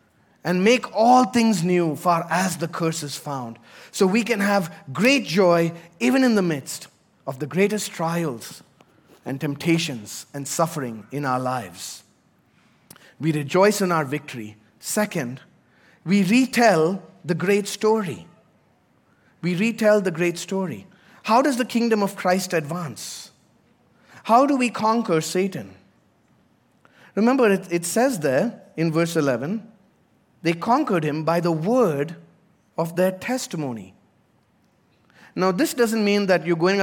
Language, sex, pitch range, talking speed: English, male, 155-205 Hz, 135 wpm